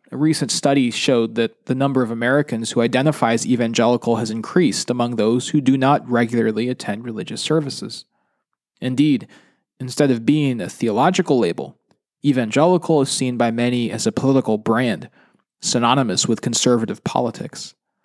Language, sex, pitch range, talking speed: English, male, 115-155 Hz, 145 wpm